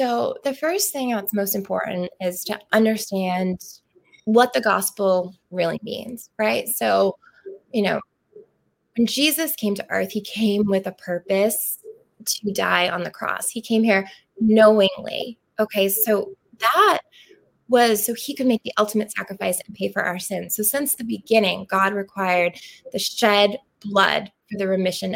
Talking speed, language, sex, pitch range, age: 155 wpm, English, female, 195-235 Hz, 20-39